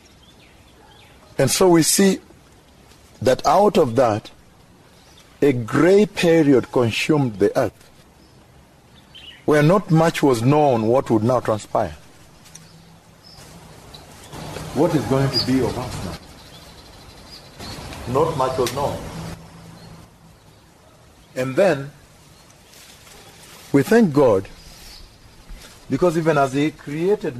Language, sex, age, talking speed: English, male, 50-69, 100 wpm